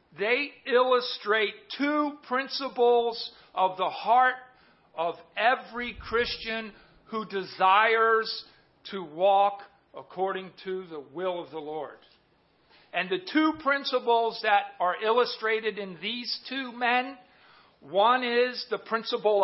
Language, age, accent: English, 50-69, American